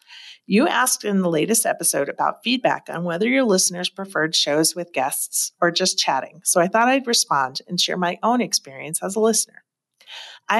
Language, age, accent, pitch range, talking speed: English, 40-59, American, 160-205 Hz, 185 wpm